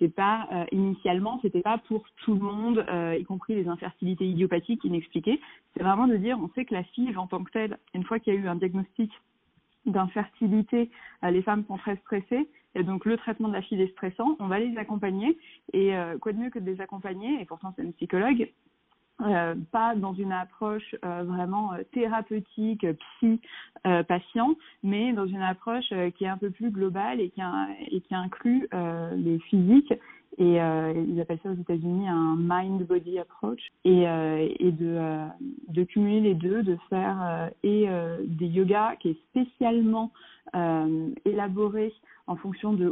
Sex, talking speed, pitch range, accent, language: female, 190 wpm, 180-220 Hz, French, French